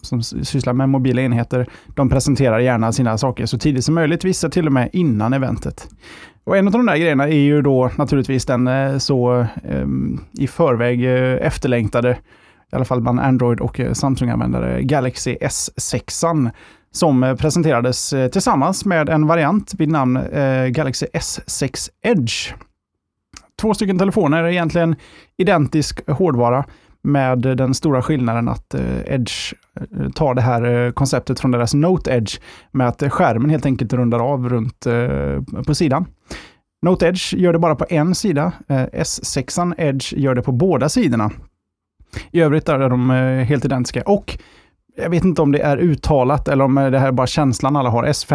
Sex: male